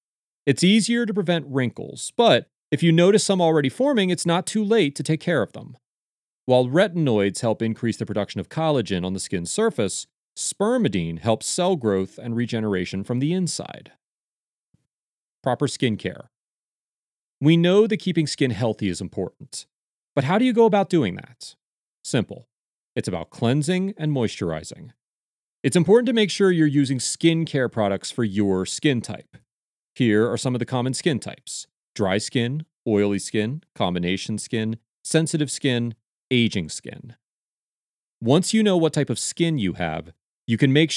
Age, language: 30-49, English